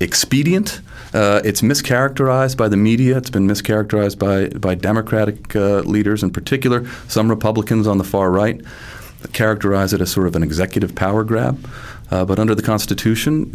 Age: 40-59